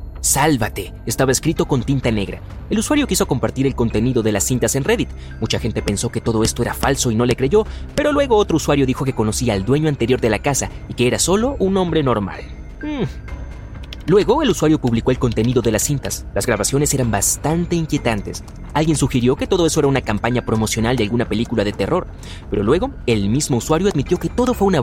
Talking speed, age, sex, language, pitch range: 215 wpm, 30-49, male, Spanish, 110-155 Hz